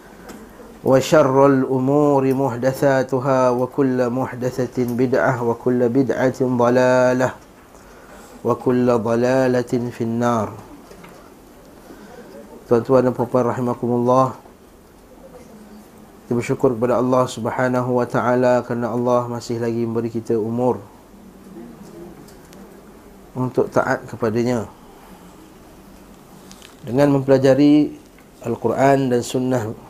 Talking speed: 85 wpm